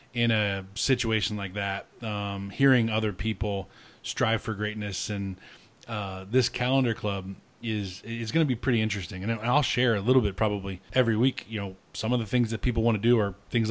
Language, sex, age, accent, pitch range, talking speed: English, male, 20-39, American, 100-120 Hz, 200 wpm